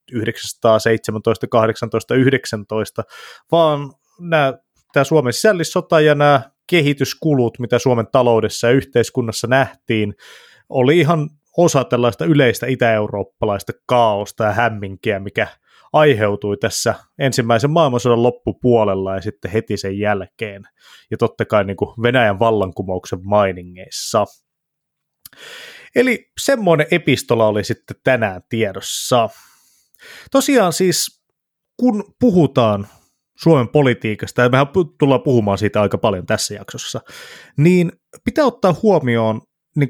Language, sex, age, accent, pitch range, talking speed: Finnish, male, 20-39, native, 110-160 Hz, 110 wpm